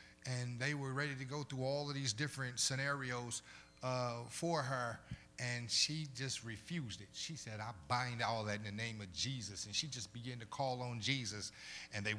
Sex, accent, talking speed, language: male, American, 200 wpm, English